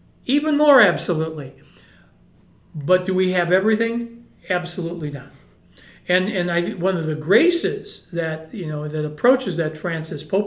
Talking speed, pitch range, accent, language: 145 wpm, 170-220 Hz, American, English